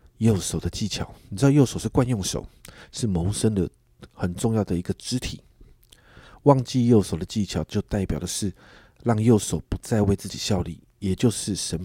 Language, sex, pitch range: Chinese, male, 90-120 Hz